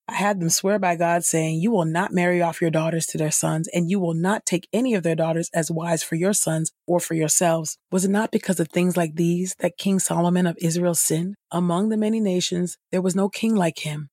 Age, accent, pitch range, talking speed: 30-49, American, 160-185 Hz, 245 wpm